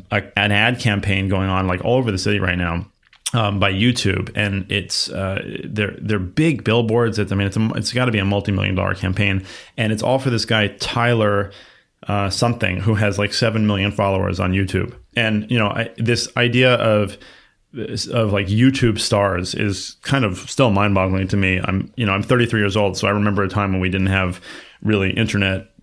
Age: 30-49